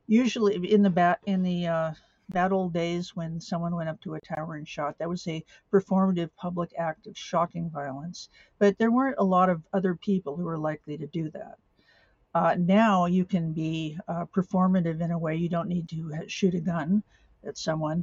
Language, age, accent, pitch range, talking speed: English, 50-69, American, 160-190 Hz, 205 wpm